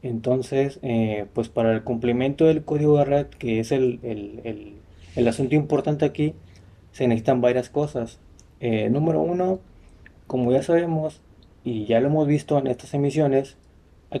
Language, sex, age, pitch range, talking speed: Spanish, male, 30-49, 110-145 Hz, 160 wpm